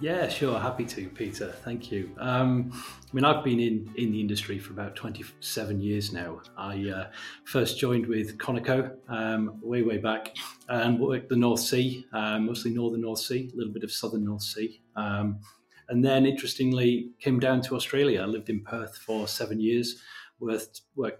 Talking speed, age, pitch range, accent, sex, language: 180 wpm, 30-49, 110-130 Hz, British, male, English